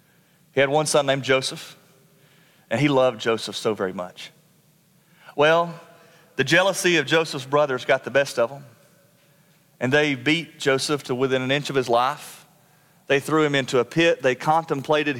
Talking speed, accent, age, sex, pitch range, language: 170 wpm, American, 40-59, male, 145-190 Hz, English